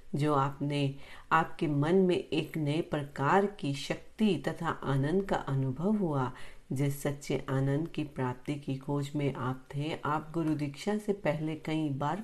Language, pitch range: Hindi, 140-180 Hz